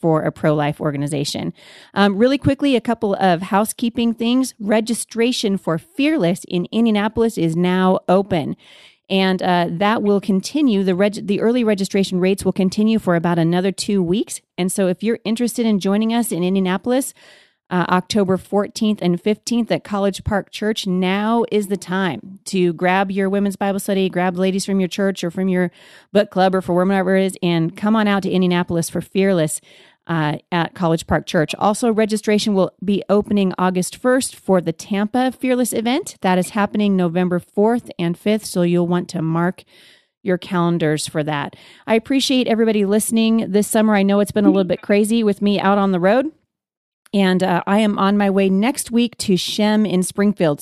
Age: 30-49